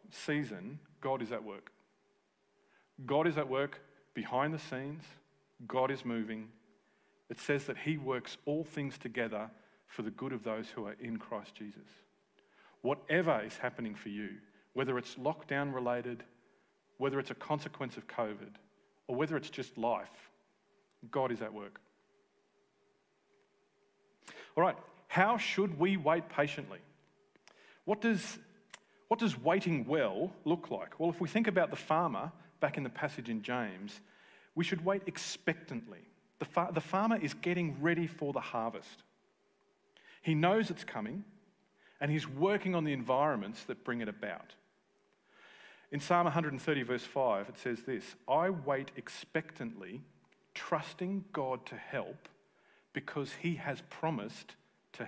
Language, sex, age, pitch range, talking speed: English, male, 40-59, 130-175 Hz, 145 wpm